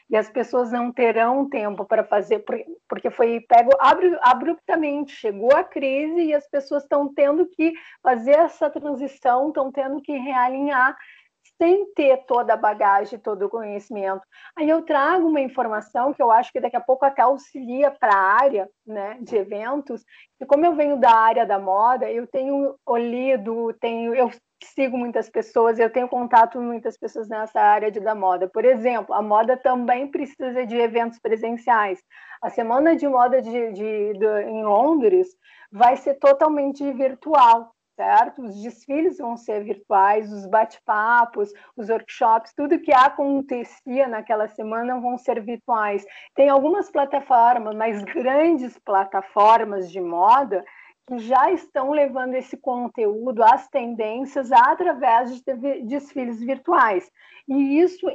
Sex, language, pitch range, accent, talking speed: female, Portuguese, 225-290 Hz, Brazilian, 150 wpm